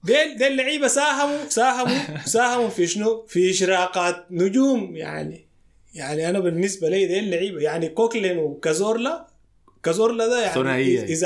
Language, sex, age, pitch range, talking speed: Arabic, male, 20-39, 155-220 Hz, 130 wpm